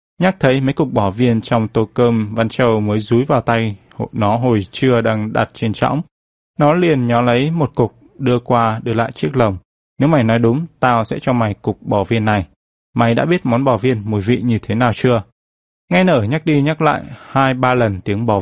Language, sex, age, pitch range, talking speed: Vietnamese, male, 20-39, 105-135 Hz, 225 wpm